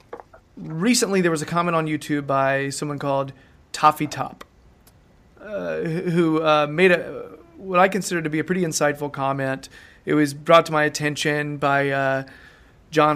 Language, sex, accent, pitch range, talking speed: English, male, American, 145-165 Hz, 160 wpm